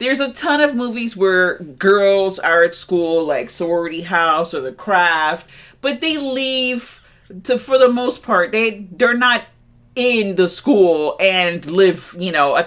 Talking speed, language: 170 wpm, English